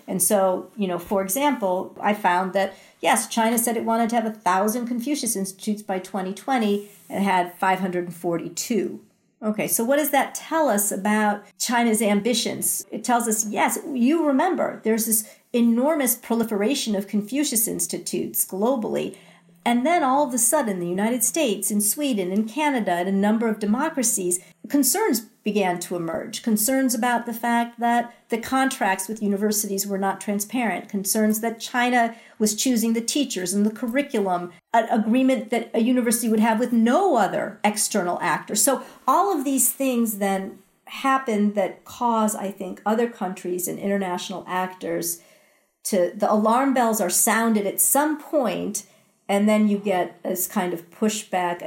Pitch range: 195-240 Hz